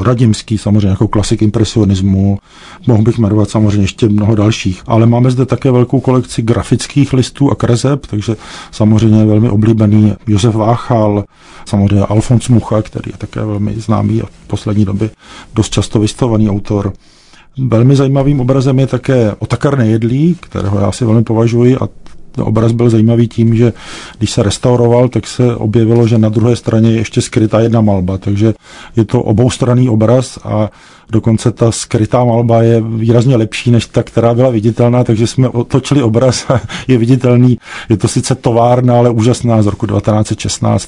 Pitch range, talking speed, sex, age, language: 105-120 Hz, 165 wpm, male, 40-59, Czech